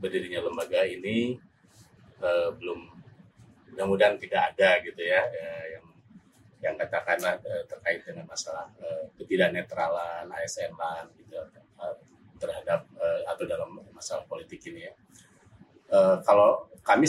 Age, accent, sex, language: 30-49, native, male, Indonesian